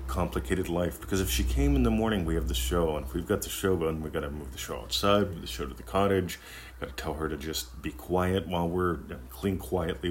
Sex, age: male, 40-59